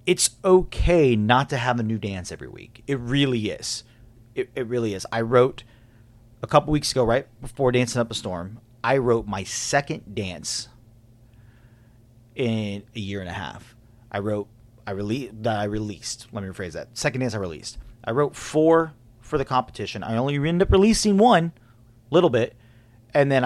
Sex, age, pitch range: male, 30-49, 115-135 Hz